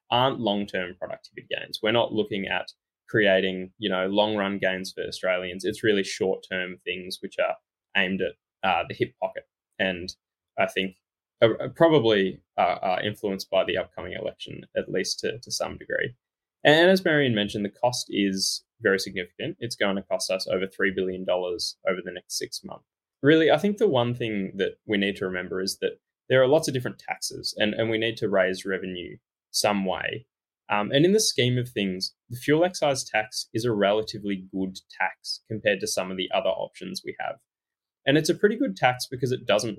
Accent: Australian